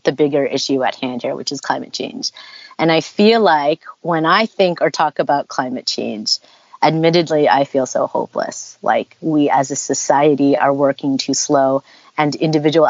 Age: 30-49